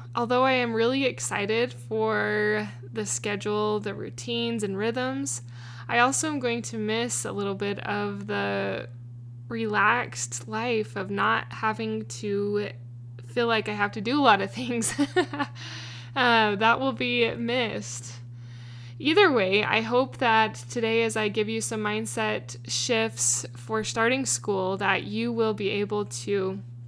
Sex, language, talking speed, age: female, English, 145 wpm, 10-29